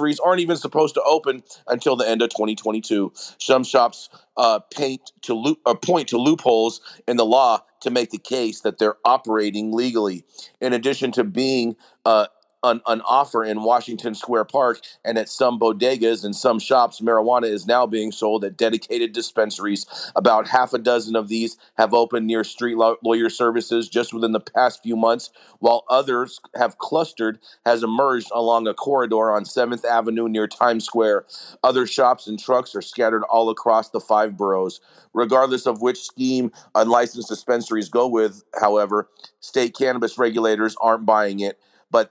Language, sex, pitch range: English, male, 110-125 Hz